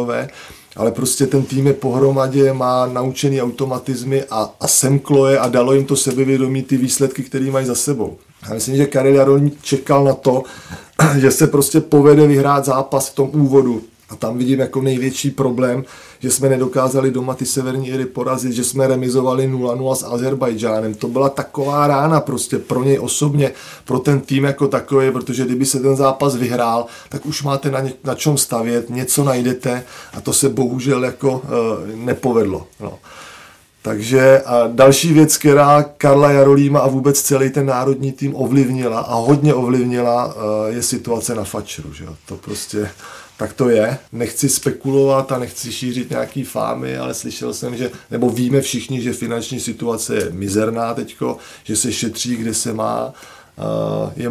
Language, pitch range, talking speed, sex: Czech, 120-140 Hz, 170 wpm, male